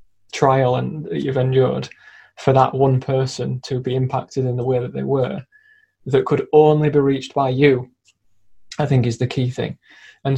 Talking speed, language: 180 wpm, English